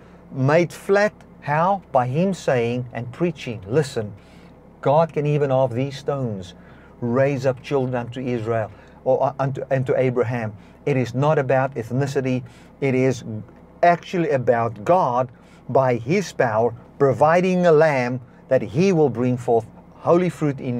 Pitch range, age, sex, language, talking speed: 120-170 Hz, 50-69, male, English, 140 wpm